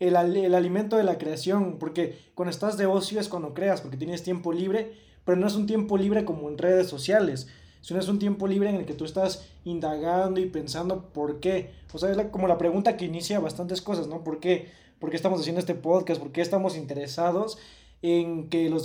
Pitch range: 170-200 Hz